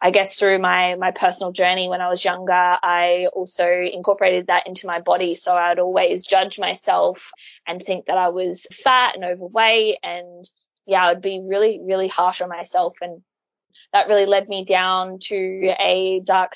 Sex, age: female, 20-39